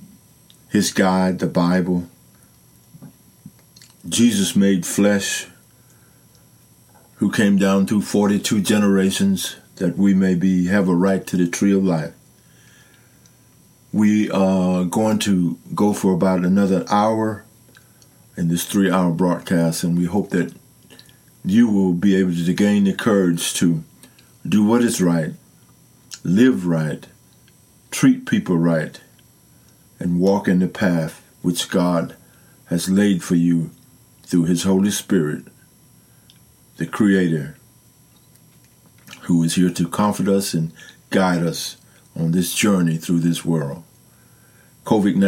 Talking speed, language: 125 wpm, English